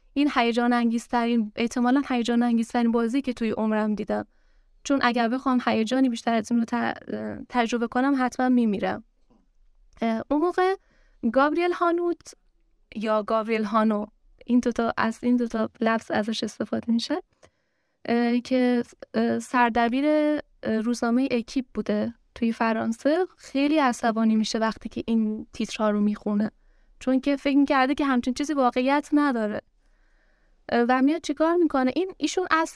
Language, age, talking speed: Persian, 10-29, 130 wpm